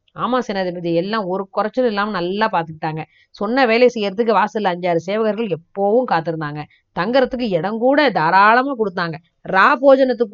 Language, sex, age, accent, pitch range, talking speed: Tamil, female, 20-39, native, 185-245 Hz, 135 wpm